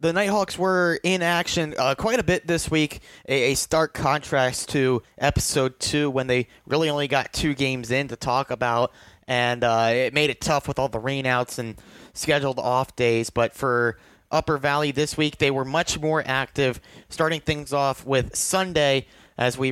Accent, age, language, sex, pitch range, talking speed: American, 30-49, English, male, 125-150 Hz, 185 wpm